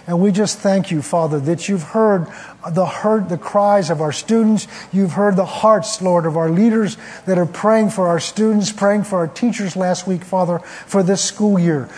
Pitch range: 170-205 Hz